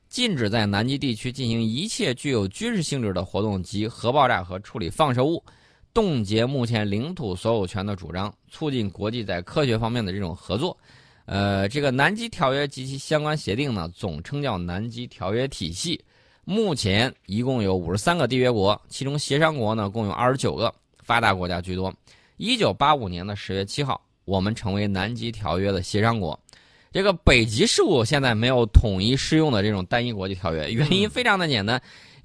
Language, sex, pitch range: Chinese, male, 100-145 Hz